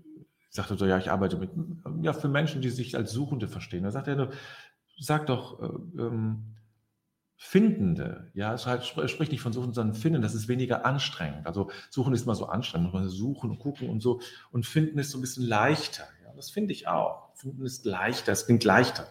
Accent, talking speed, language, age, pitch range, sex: German, 215 wpm, German, 40-59, 115-150 Hz, male